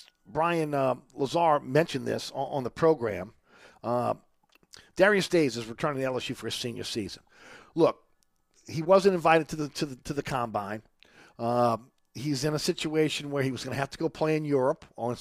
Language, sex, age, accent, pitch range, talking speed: English, male, 50-69, American, 120-150 Hz, 190 wpm